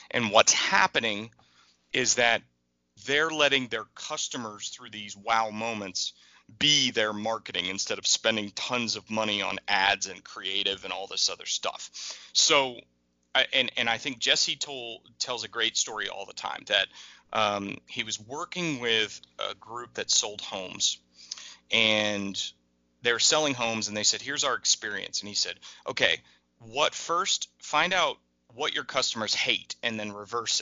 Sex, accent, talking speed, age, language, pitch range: male, American, 160 wpm, 30-49, English, 100-130 Hz